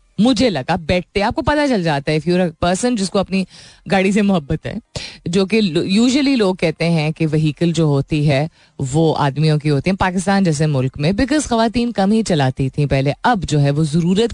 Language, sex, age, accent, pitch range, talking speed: Hindi, female, 30-49, native, 155-215 Hz, 200 wpm